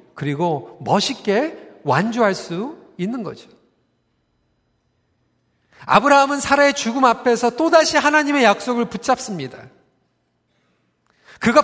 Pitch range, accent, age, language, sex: 190-270 Hz, native, 40-59, Korean, male